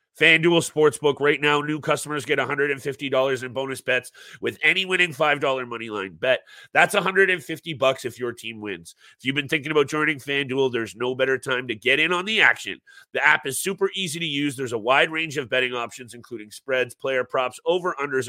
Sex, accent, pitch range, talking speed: male, American, 120-150 Hz, 195 wpm